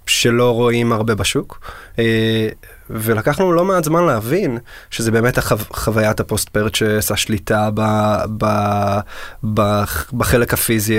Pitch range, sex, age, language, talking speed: 105-120 Hz, male, 20-39, Hebrew, 115 wpm